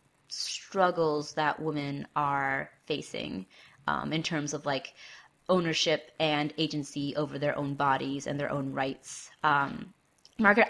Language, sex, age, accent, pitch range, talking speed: English, female, 20-39, American, 145-160 Hz, 130 wpm